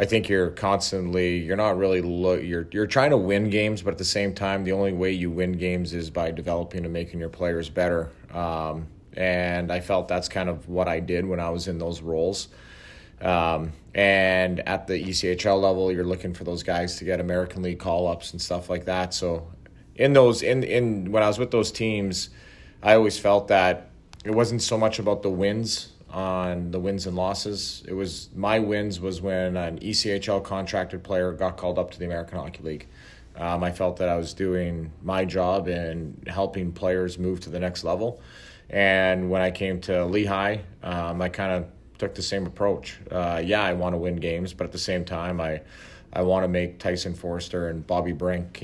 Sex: male